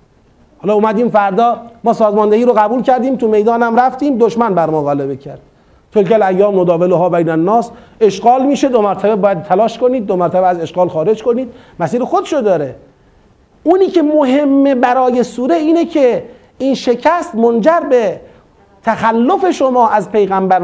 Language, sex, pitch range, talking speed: Persian, male, 185-265 Hz, 155 wpm